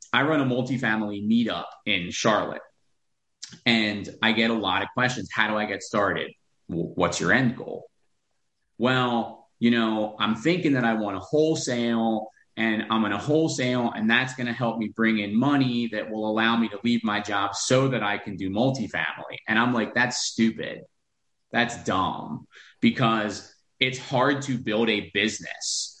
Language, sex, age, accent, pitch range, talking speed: English, male, 30-49, American, 105-130 Hz, 175 wpm